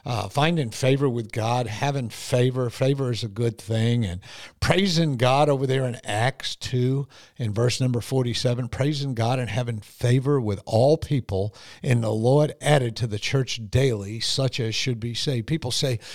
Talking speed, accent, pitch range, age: 175 wpm, American, 115-145 Hz, 50-69